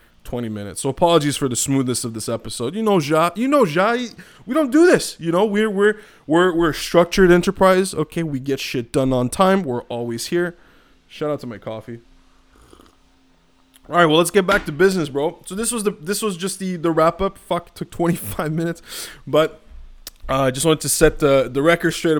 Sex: male